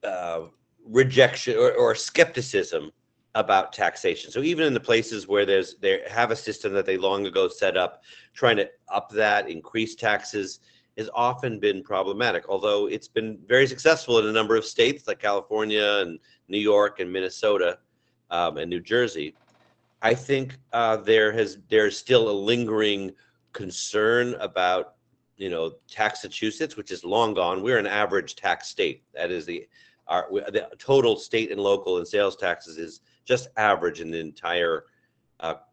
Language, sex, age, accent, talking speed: English, male, 50-69, American, 165 wpm